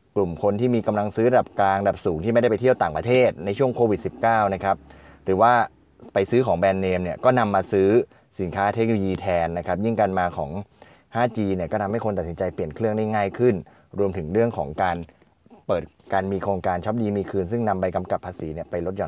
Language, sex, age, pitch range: Thai, male, 20-39, 95-115 Hz